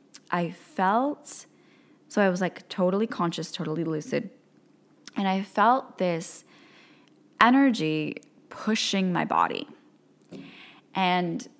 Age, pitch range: 10-29, 170-230 Hz